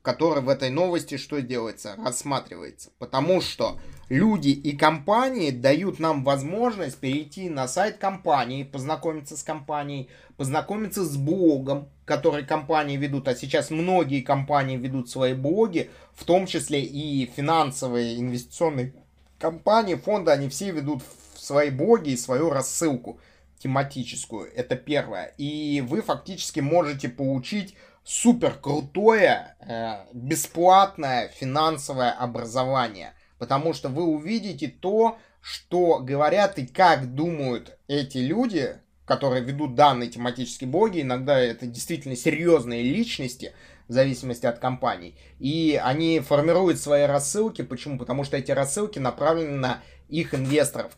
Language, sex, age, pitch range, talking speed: Russian, male, 20-39, 130-160 Hz, 120 wpm